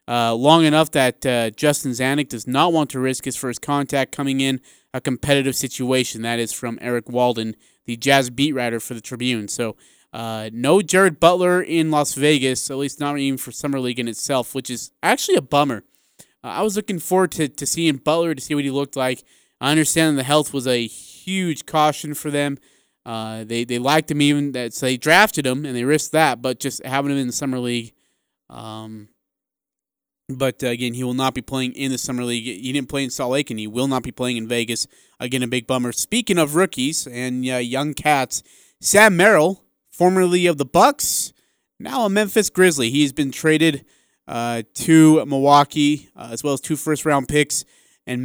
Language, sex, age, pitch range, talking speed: English, male, 20-39, 125-155 Hz, 200 wpm